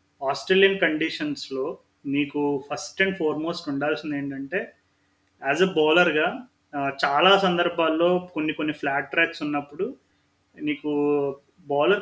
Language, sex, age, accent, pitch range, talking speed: Telugu, male, 30-49, native, 140-170 Hz, 100 wpm